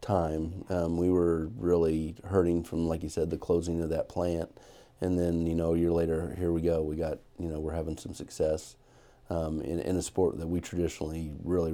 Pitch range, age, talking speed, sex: 85-95 Hz, 40-59, 215 wpm, male